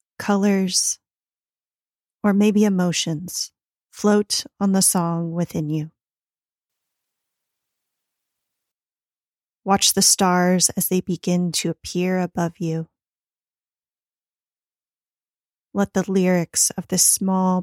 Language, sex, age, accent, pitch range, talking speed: English, female, 30-49, American, 175-200 Hz, 90 wpm